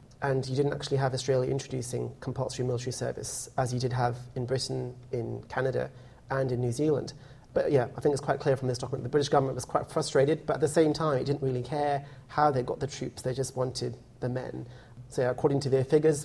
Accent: British